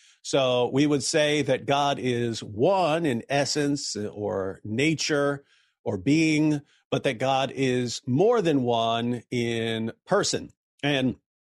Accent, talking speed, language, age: American, 125 wpm, English, 50-69